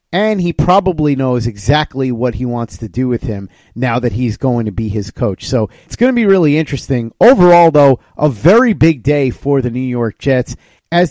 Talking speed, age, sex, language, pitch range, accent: 210 wpm, 30-49, male, English, 120-150 Hz, American